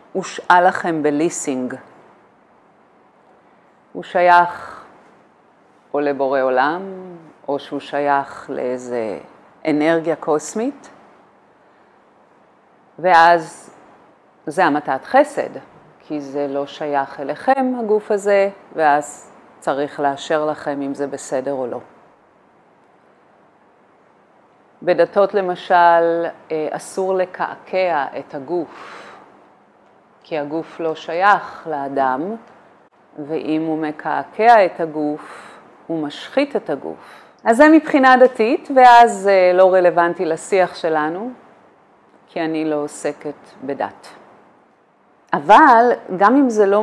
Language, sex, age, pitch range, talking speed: Hebrew, female, 40-59, 150-220 Hz, 95 wpm